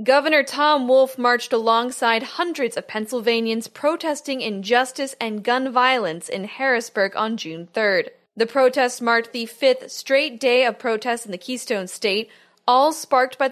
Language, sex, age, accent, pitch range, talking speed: English, female, 20-39, American, 210-260 Hz, 150 wpm